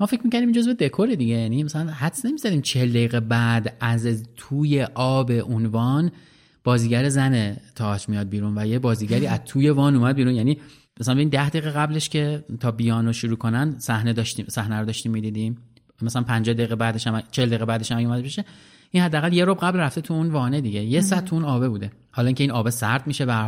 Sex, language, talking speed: male, Persian, 195 wpm